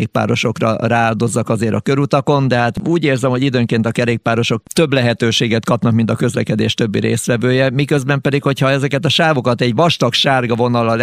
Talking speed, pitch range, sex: 170 wpm, 115-145 Hz, male